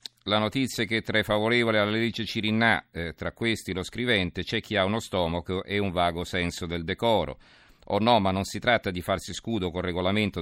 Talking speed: 220 wpm